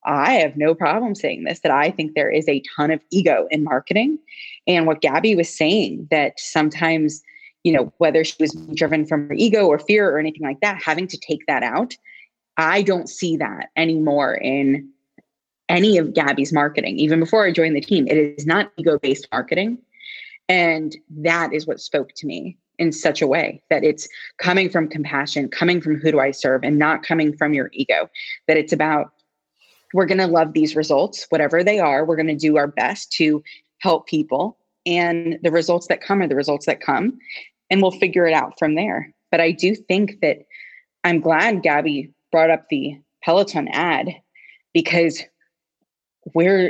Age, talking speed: 20-39, 185 wpm